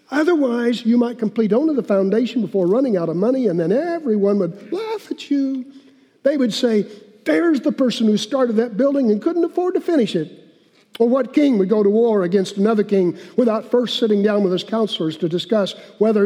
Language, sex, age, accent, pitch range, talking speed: English, male, 50-69, American, 180-230 Hz, 205 wpm